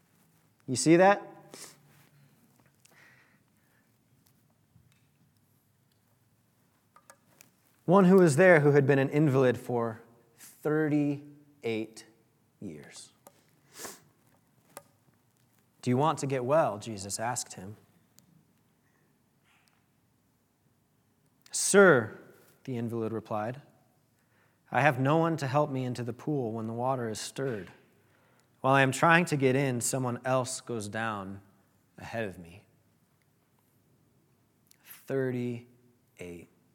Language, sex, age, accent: English, male, 30-49, American